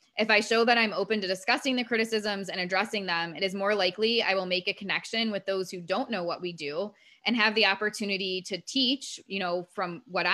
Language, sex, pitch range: English, female, 180-210 Hz